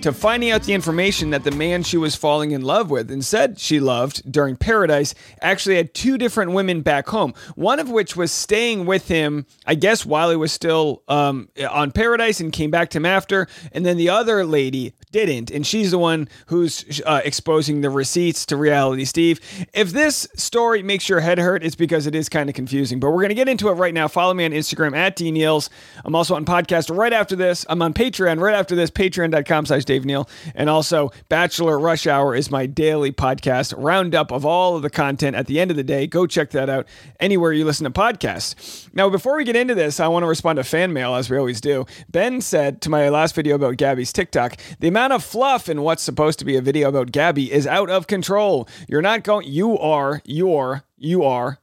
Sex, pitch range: male, 145-190 Hz